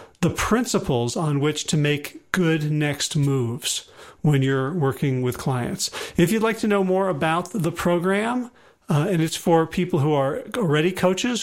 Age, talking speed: 40-59, 170 wpm